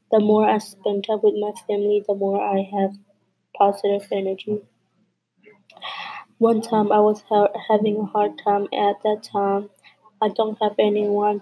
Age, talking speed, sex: 20-39, 160 wpm, female